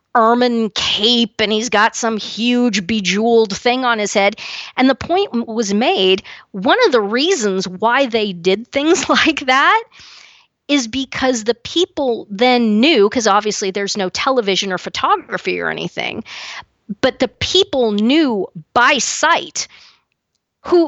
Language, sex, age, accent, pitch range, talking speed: English, female, 40-59, American, 205-270 Hz, 140 wpm